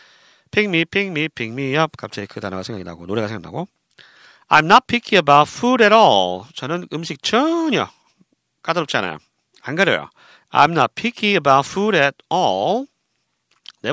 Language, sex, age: Korean, male, 40-59